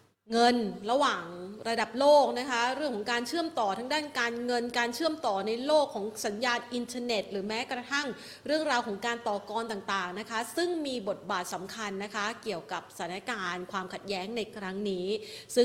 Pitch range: 195-235 Hz